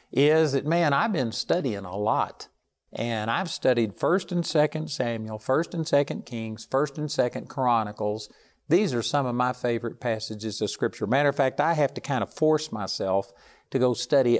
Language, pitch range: English, 110-140 Hz